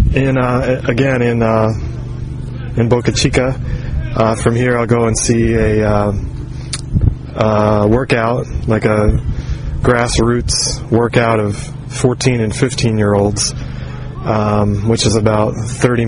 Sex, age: male, 20-39